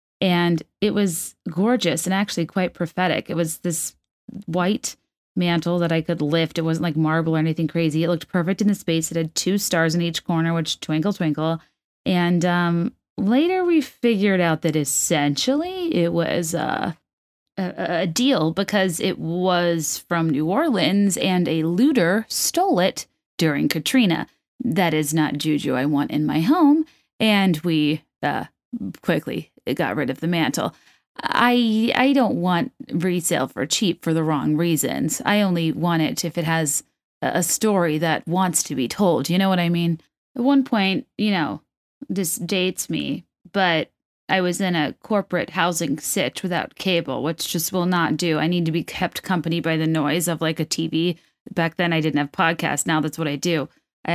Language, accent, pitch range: English, American, 160-190 Hz